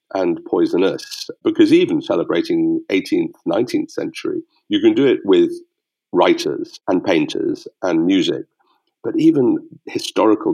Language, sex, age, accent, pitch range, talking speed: English, male, 50-69, British, 315-360 Hz, 120 wpm